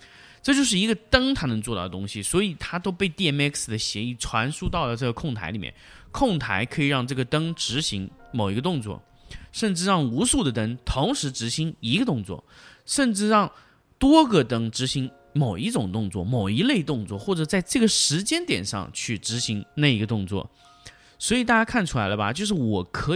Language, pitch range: Chinese, 110-165 Hz